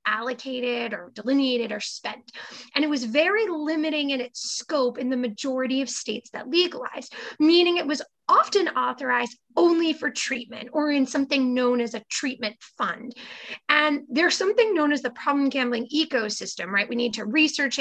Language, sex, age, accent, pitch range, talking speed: English, female, 20-39, American, 245-330 Hz, 170 wpm